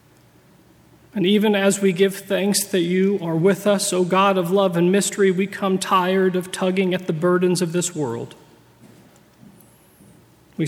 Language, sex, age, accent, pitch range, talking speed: English, male, 40-59, American, 160-195 Hz, 165 wpm